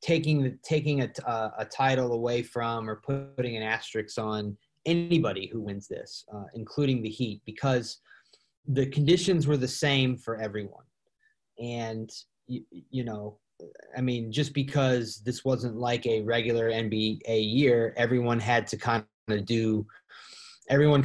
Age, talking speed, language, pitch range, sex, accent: 30-49, 155 wpm, English, 110-130 Hz, male, American